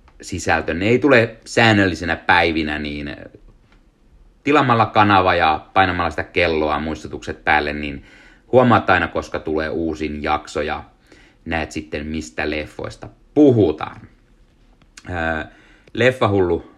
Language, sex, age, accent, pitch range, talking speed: Finnish, male, 30-49, native, 75-100 Hz, 100 wpm